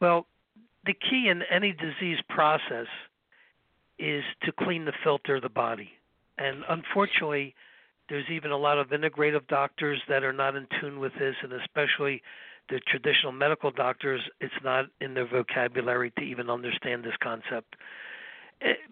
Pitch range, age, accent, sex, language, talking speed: 135-160 Hz, 60-79, American, male, English, 150 wpm